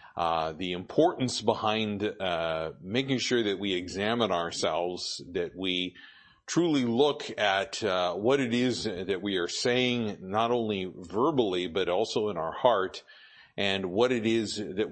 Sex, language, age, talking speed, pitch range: male, English, 50-69, 150 wpm, 95-130 Hz